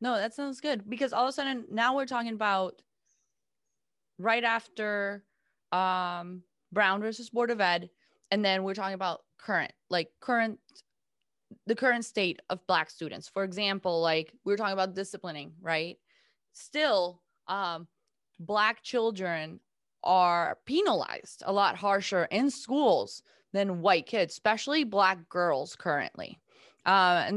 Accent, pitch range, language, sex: American, 180-225 Hz, English, female